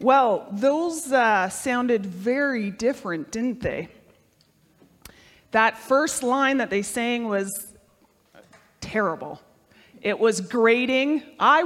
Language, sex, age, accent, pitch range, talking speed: English, female, 30-49, American, 205-270 Hz, 105 wpm